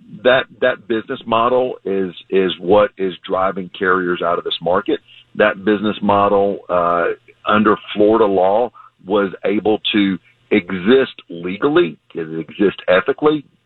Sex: male